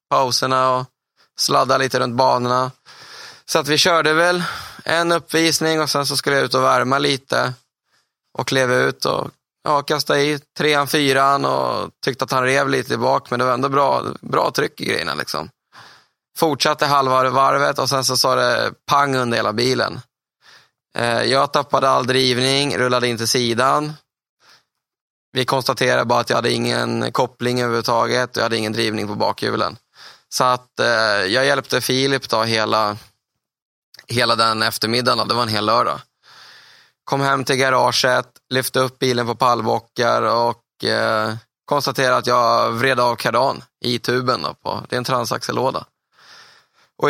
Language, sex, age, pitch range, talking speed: English, male, 20-39, 115-140 Hz, 160 wpm